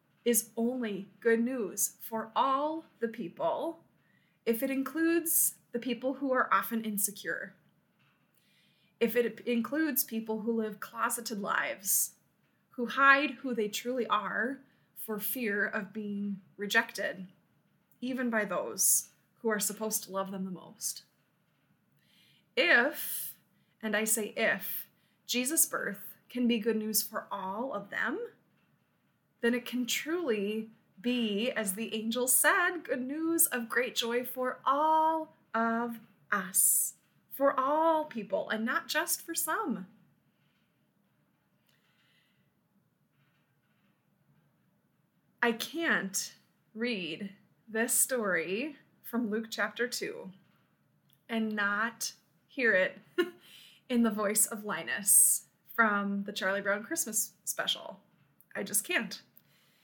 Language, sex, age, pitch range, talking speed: English, female, 20-39, 205-255 Hz, 115 wpm